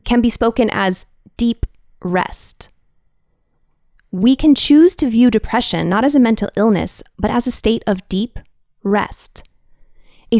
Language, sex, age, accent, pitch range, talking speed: English, female, 20-39, American, 175-230 Hz, 145 wpm